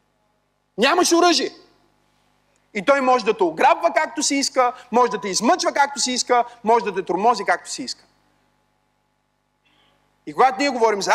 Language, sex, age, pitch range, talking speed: Bulgarian, male, 30-49, 215-285 Hz, 160 wpm